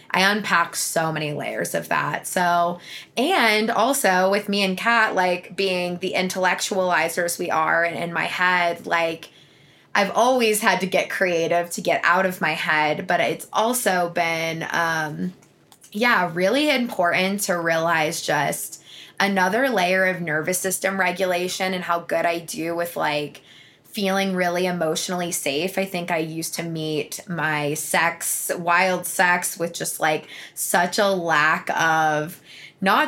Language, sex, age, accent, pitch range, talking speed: English, female, 20-39, American, 170-195 Hz, 150 wpm